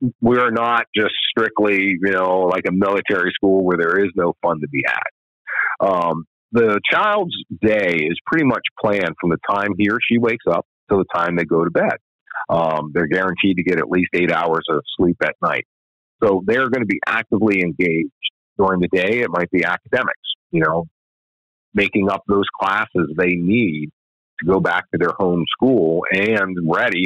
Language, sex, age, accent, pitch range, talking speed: English, male, 40-59, American, 85-100 Hz, 190 wpm